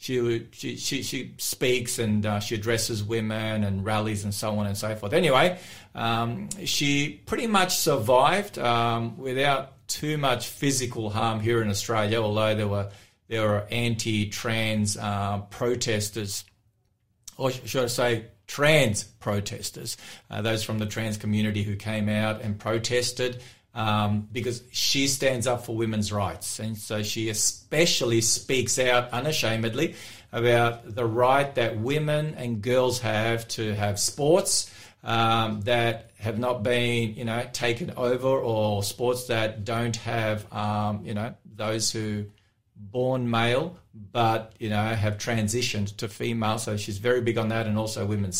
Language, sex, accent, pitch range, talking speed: English, male, Australian, 105-125 Hz, 150 wpm